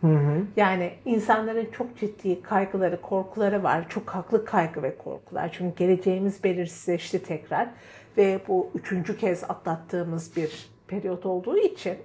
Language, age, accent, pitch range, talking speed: Turkish, 60-79, native, 190-275 Hz, 125 wpm